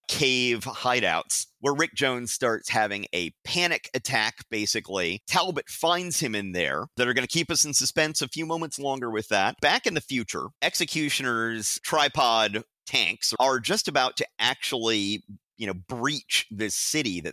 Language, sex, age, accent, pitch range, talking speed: English, male, 50-69, American, 110-150 Hz, 165 wpm